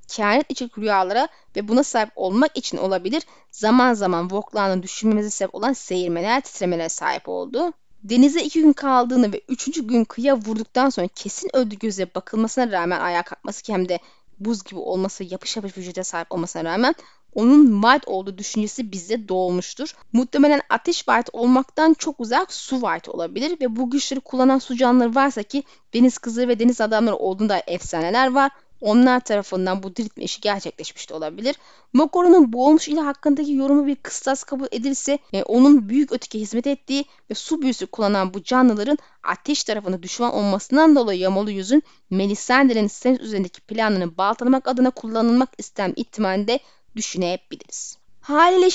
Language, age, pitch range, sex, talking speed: Turkish, 10-29, 200-275 Hz, female, 155 wpm